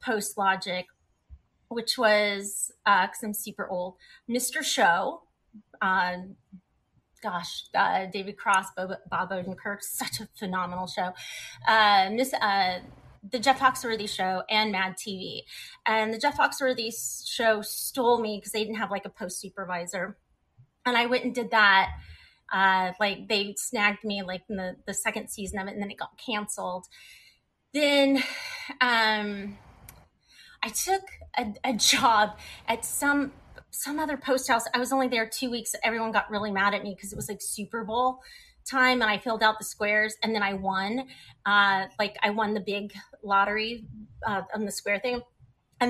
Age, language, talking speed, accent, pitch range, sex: 30-49, English, 165 wpm, American, 195-250 Hz, female